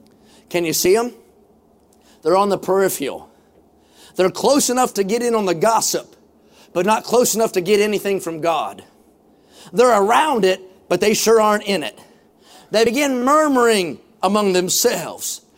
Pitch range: 225-280 Hz